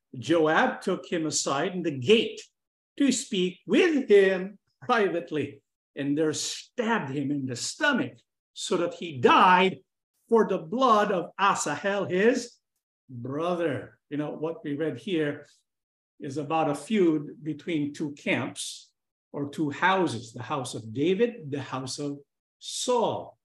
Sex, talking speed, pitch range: male, 140 wpm, 150-215 Hz